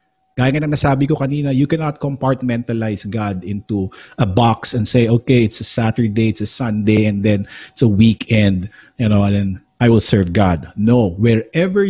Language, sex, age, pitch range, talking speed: Filipino, male, 50-69, 110-155 Hz, 180 wpm